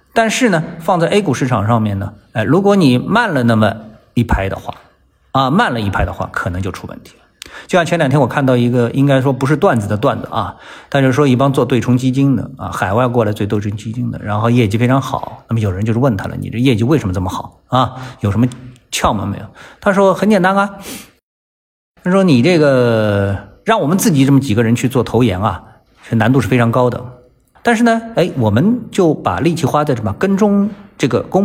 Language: Chinese